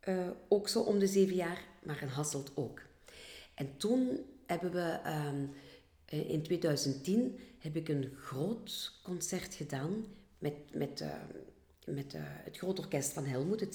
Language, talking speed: Dutch, 155 wpm